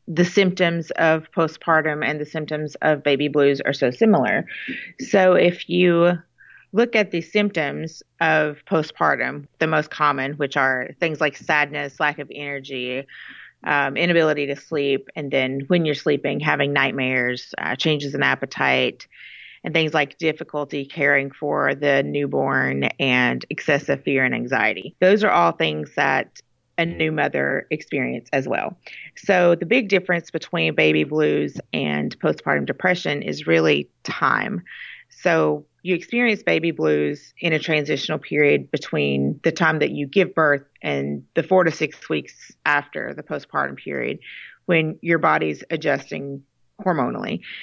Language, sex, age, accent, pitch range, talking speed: English, female, 30-49, American, 140-170 Hz, 145 wpm